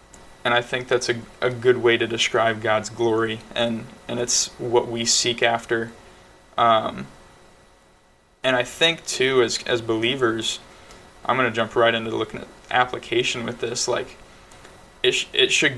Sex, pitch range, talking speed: male, 115-125 Hz, 165 wpm